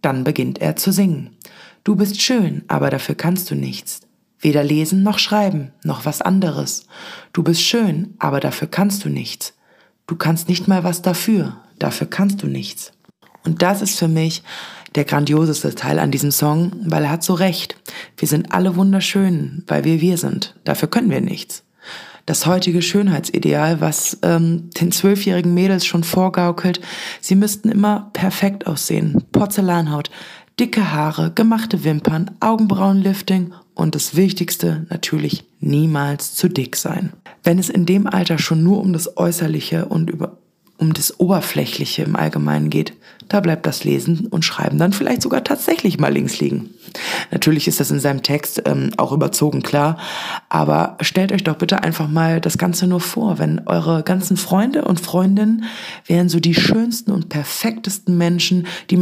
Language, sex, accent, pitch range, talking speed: German, female, German, 160-195 Hz, 165 wpm